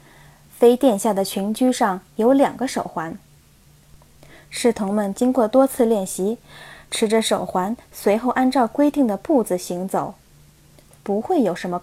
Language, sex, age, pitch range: Chinese, female, 20-39, 195-250 Hz